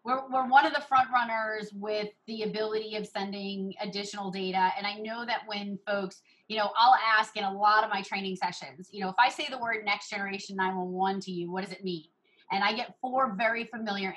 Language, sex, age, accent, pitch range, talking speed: English, female, 30-49, American, 200-245 Hz, 235 wpm